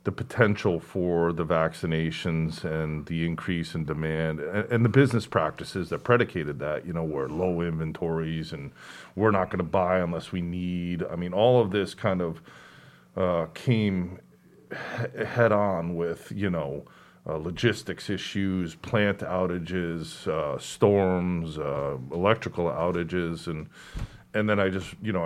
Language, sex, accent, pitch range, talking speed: English, male, American, 85-100 Hz, 150 wpm